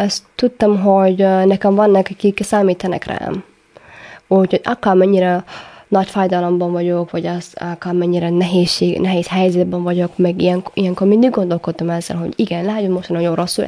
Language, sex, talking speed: Hungarian, female, 135 wpm